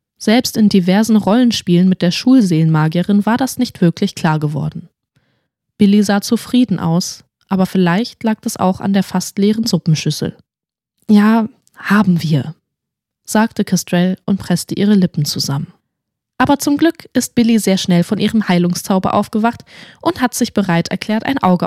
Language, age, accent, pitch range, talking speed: German, 20-39, German, 180-240 Hz, 150 wpm